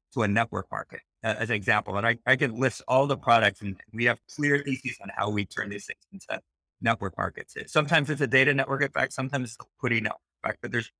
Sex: male